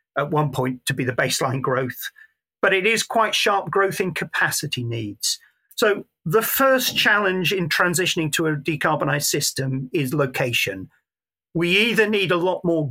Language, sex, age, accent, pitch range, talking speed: English, male, 40-59, British, 135-180 Hz, 165 wpm